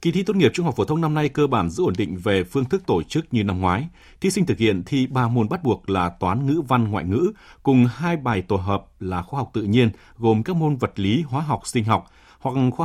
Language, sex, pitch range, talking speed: Vietnamese, male, 100-140 Hz, 275 wpm